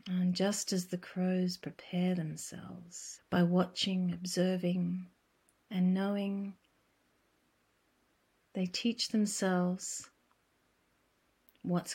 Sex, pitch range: female, 175-200 Hz